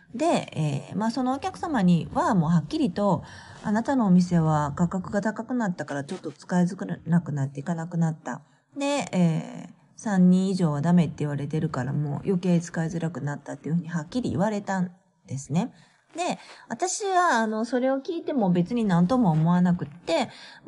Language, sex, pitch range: Japanese, female, 160-205 Hz